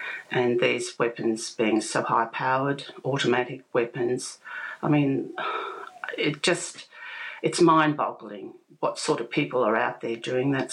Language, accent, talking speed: English, Australian, 140 wpm